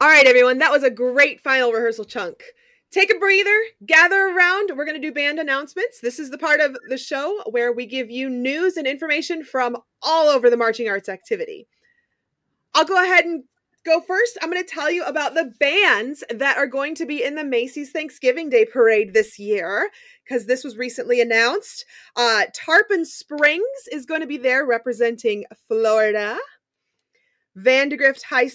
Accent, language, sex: American, English, female